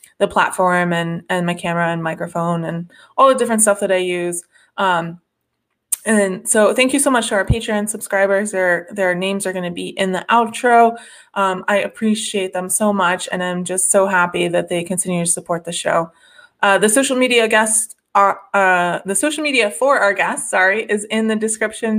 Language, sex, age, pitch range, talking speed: English, female, 20-39, 190-230 Hz, 200 wpm